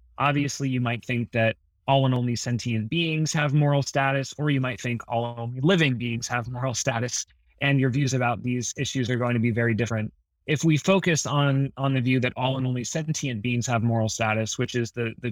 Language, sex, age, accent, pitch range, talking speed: English, male, 30-49, American, 115-140 Hz, 225 wpm